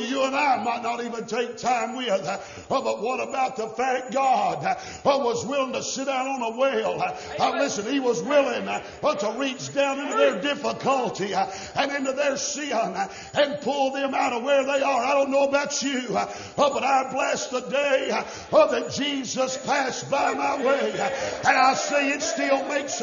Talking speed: 175 wpm